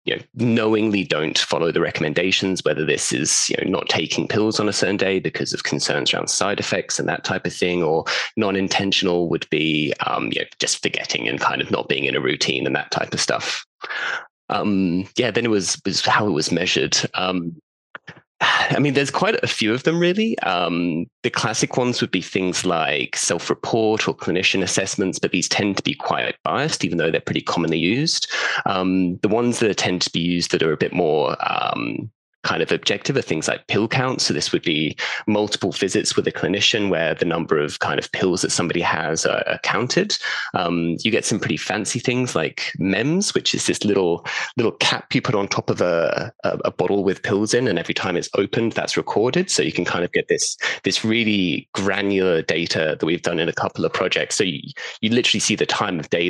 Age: 20-39